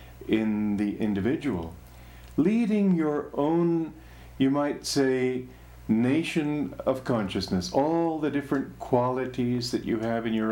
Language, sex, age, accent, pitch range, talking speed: English, male, 50-69, American, 100-145 Hz, 120 wpm